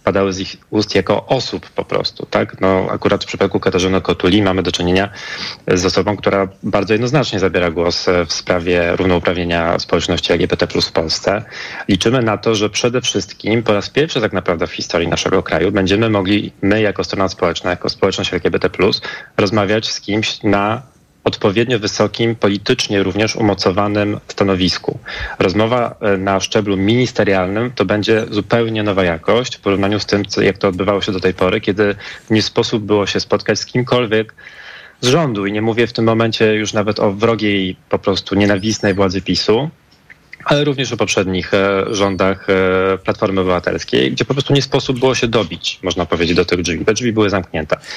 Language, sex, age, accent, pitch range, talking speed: Polish, male, 30-49, native, 95-110 Hz, 170 wpm